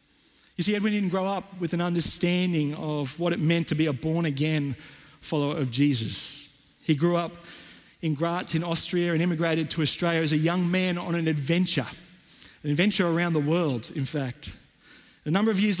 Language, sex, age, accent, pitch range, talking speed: English, male, 40-59, Australian, 160-200 Hz, 185 wpm